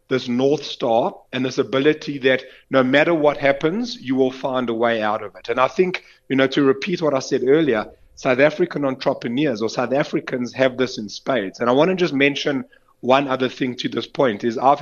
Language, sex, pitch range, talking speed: English, male, 125-145 Hz, 220 wpm